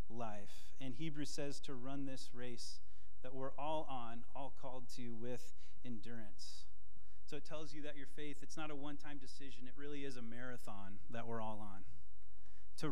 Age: 30-49